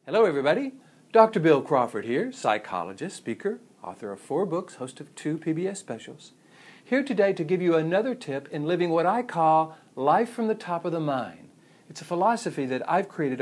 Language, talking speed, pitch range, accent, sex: English, 190 wpm, 140-195 Hz, American, male